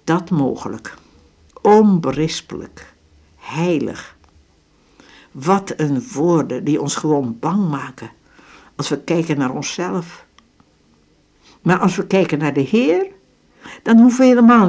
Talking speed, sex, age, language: 115 wpm, female, 60-79, Dutch